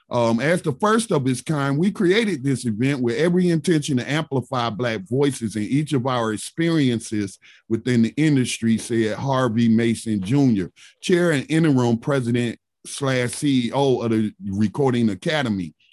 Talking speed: 150 wpm